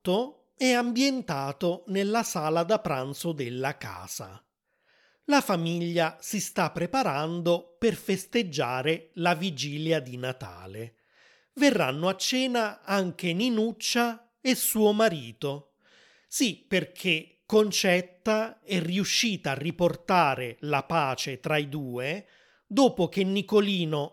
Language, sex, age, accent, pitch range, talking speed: Italian, male, 30-49, native, 155-215 Hz, 105 wpm